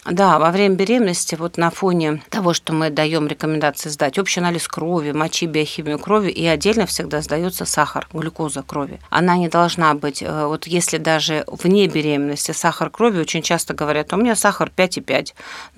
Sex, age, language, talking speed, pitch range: female, 40-59, Russian, 165 wpm, 150-180 Hz